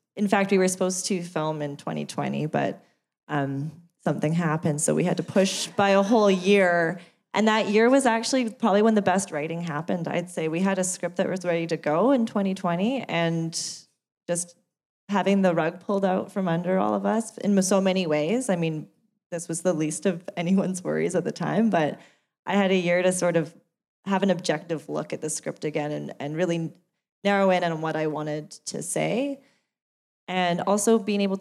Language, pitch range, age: English, 155-195 Hz, 20-39